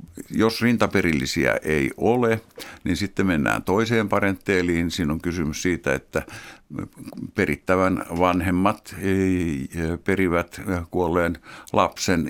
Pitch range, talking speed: 85-100 Hz, 100 wpm